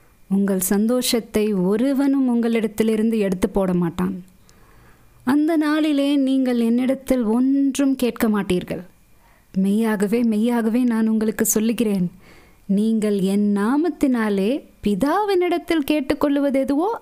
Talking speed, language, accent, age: 85 wpm, Tamil, native, 20-39